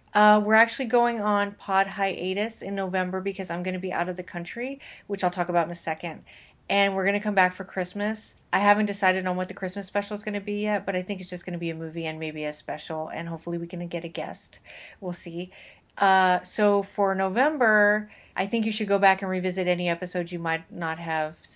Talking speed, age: 240 wpm, 30-49